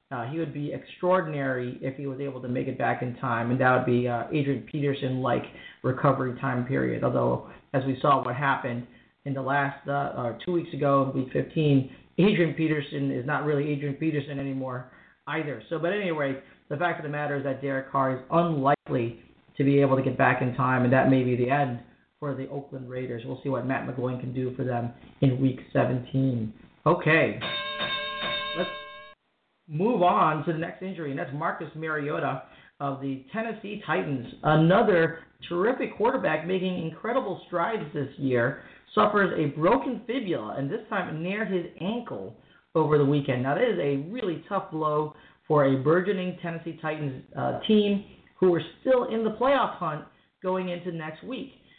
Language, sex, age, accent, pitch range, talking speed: English, male, 30-49, American, 135-170 Hz, 180 wpm